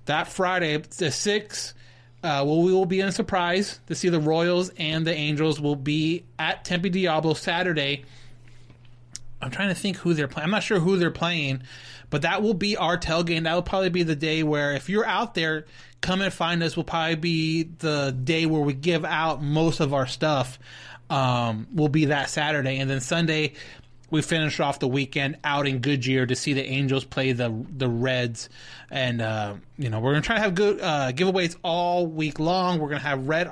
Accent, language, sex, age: American, English, male, 30-49